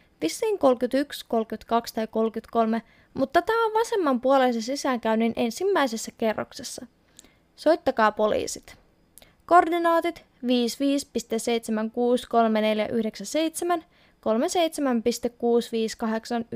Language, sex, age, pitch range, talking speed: Finnish, female, 20-39, 210-275 Hz, 60 wpm